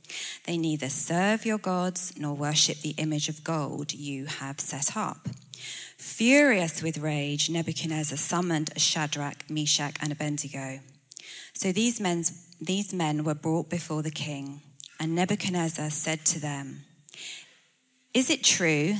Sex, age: female, 20-39